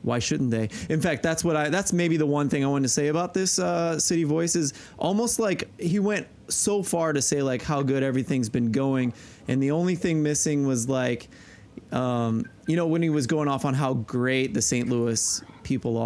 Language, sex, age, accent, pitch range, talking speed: English, male, 20-39, American, 120-155 Hz, 220 wpm